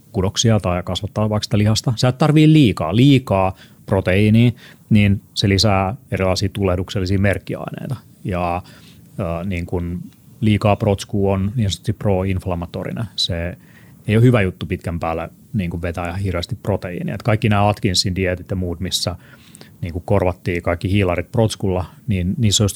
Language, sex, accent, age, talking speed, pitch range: Finnish, male, native, 30-49, 140 wpm, 90-110 Hz